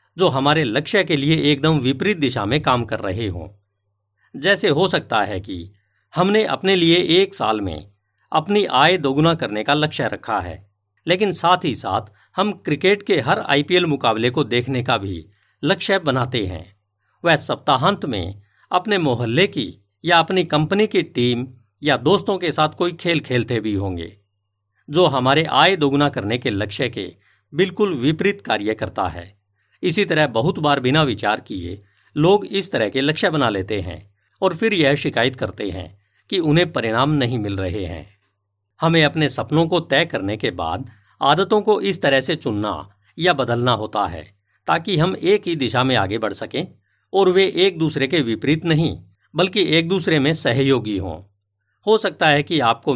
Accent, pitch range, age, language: native, 105-165 Hz, 50-69, Hindi